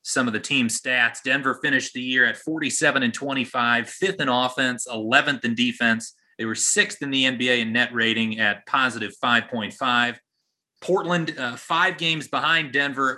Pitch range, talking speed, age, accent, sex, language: 110-140 Hz, 170 wpm, 30-49, American, male, English